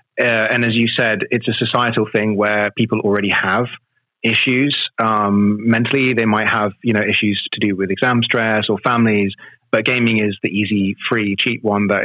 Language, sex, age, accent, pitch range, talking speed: English, male, 30-49, British, 105-125 Hz, 190 wpm